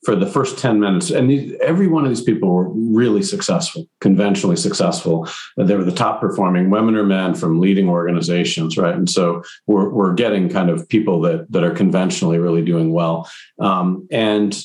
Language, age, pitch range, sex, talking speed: English, 50-69, 80-105 Hz, male, 190 wpm